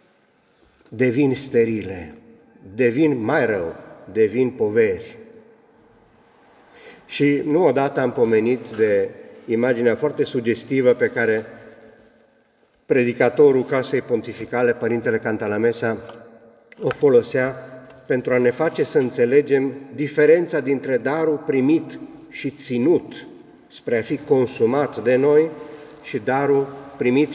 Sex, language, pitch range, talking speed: male, Romanian, 115-140 Hz, 100 wpm